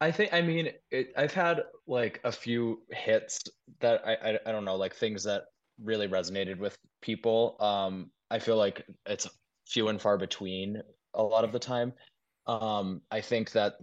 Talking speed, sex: 180 wpm, male